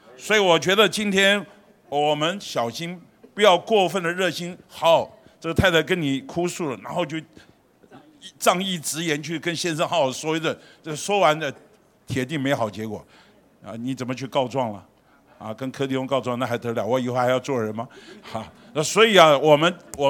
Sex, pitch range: male, 130-180 Hz